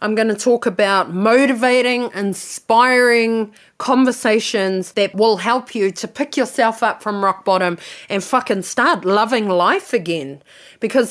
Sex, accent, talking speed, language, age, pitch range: female, Australian, 140 wpm, English, 30-49, 195-245 Hz